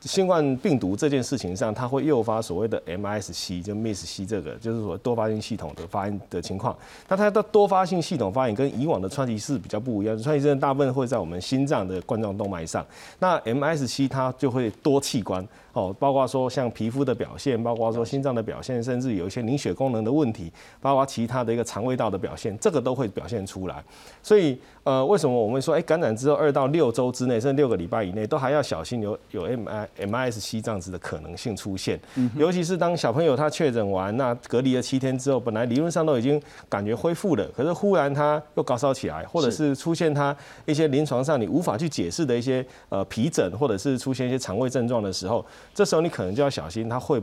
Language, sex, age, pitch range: Chinese, male, 30-49, 110-145 Hz